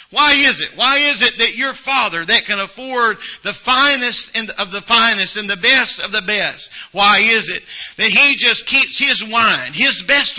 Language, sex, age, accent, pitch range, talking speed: English, male, 50-69, American, 205-235 Hz, 195 wpm